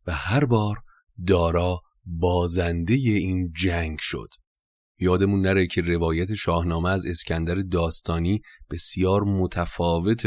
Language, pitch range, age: Persian, 85-100 Hz, 30-49